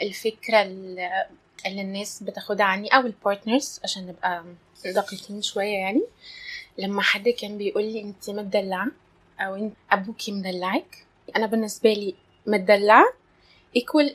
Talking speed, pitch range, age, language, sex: 115 wpm, 195-240 Hz, 20-39, Arabic, female